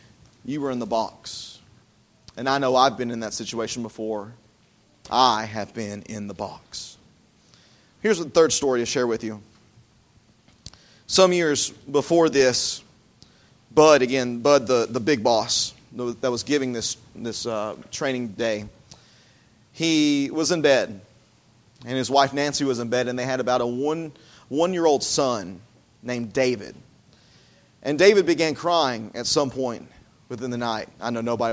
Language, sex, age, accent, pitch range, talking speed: English, male, 30-49, American, 115-165 Hz, 155 wpm